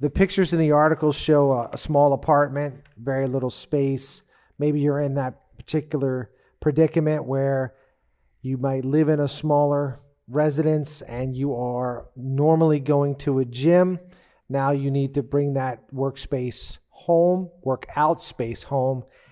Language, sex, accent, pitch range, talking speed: English, male, American, 130-150 Hz, 145 wpm